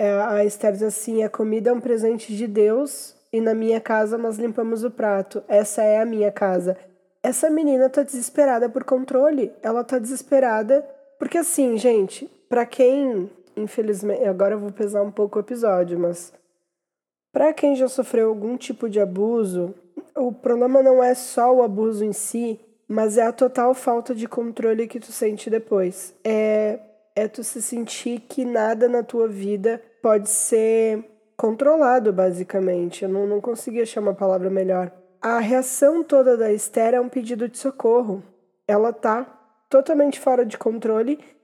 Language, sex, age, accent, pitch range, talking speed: Portuguese, female, 20-39, Brazilian, 200-250 Hz, 165 wpm